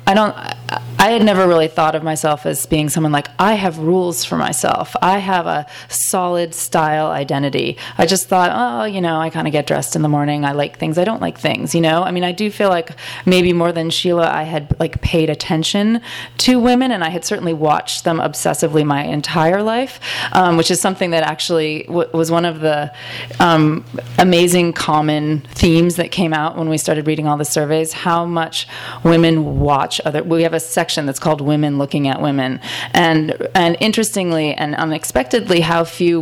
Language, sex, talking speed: English, female, 200 wpm